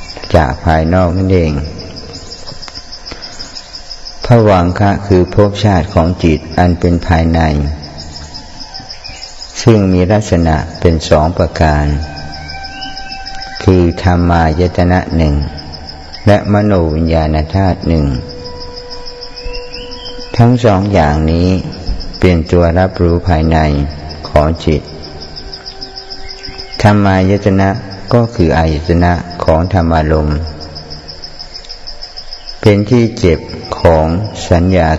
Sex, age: male, 60-79